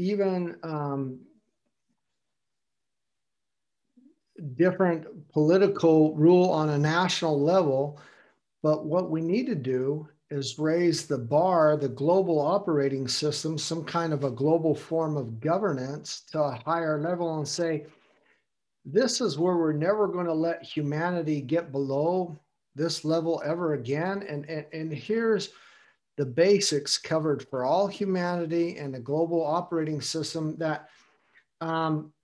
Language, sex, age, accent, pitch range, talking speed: English, male, 50-69, American, 150-175 Hz, 130 wpm